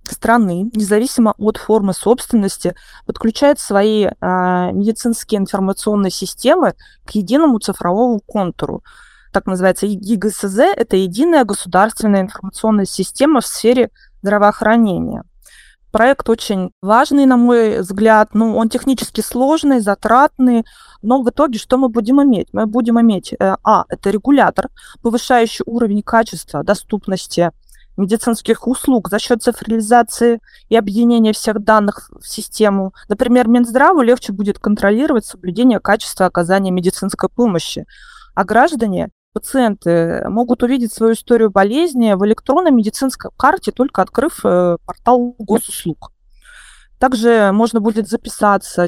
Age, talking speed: 20-39, 120 wpm